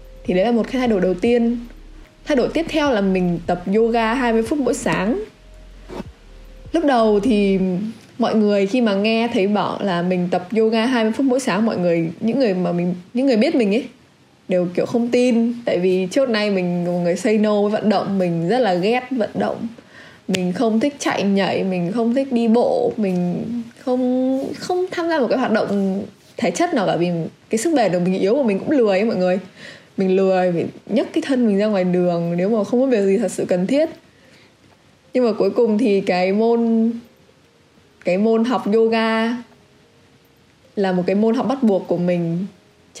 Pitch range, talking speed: 185-240 Hz, 205 wpm